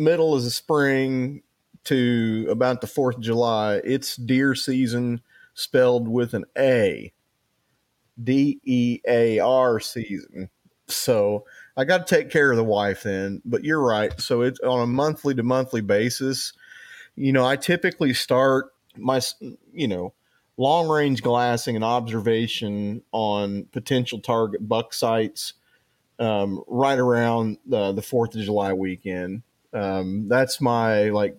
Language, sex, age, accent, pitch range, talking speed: English, male, 30-49, American, 105-130 Hz, 135 wpm